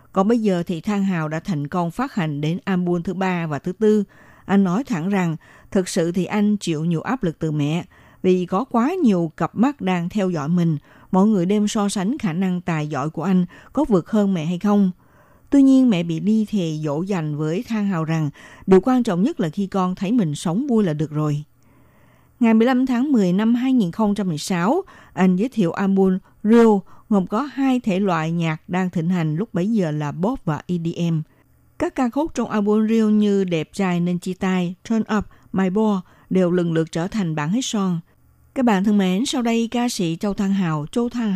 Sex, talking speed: female, 215 wpm